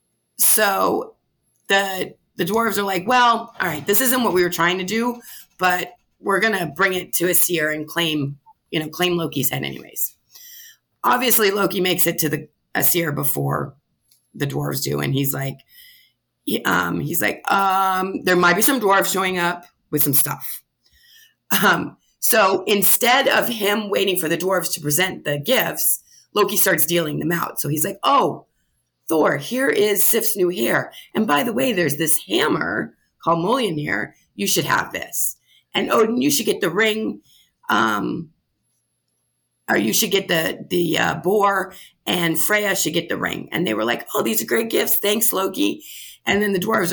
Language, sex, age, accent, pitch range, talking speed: English, female, 30-49, American, 170-215 Hz, 180 wpm